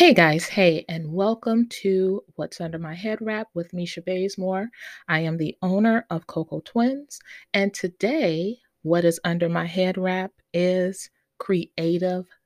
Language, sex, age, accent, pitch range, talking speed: English, female, 30-49, American, 160-215 Hz, 150 wpm